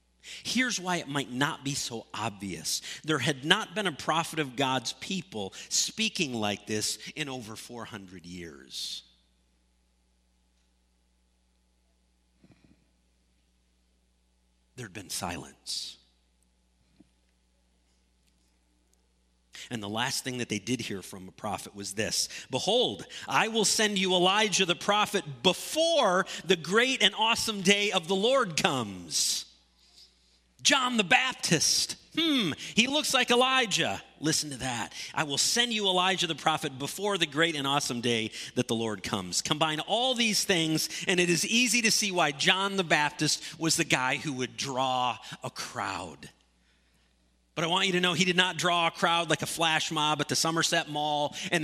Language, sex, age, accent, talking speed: English, male, 50-69, American, 150 wpm